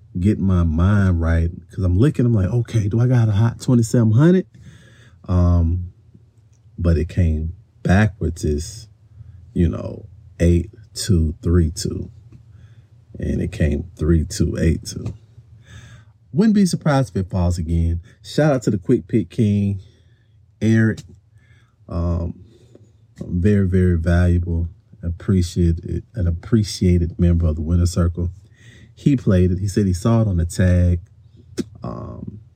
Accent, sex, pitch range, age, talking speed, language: American, male, 90-115 Hz, 40-59, 140 wpm, English